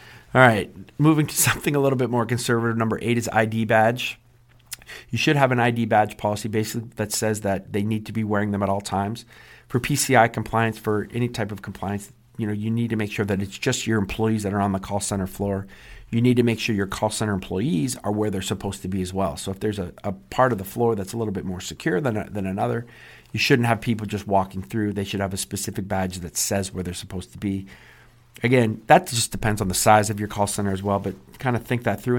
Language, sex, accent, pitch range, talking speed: English, male, American, 95-115 Hz, 255 wpm